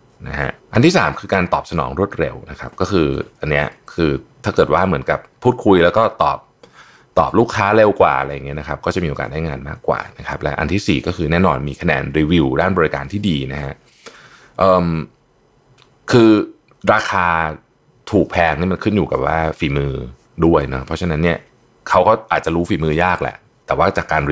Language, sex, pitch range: Thai, male, 75-100 Hz